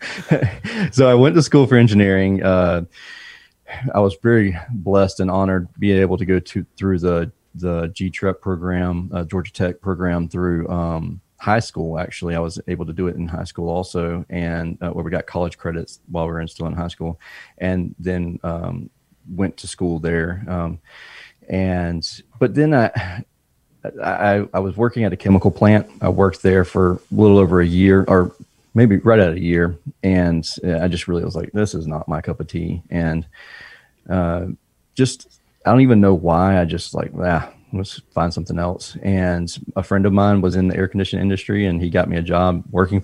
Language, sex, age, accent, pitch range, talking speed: English, male, 30-49, American, 85-100 Hz, 195 wpm